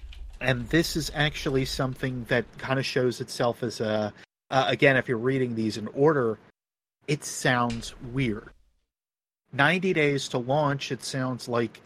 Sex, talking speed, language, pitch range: male, 150 wpm, English, 115-135 Hz